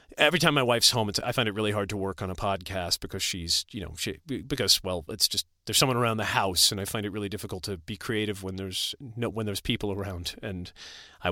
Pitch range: 100-140 Hz